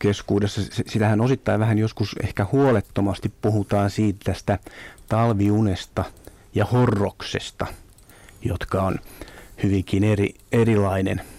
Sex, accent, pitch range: male, native, 100-110 Hz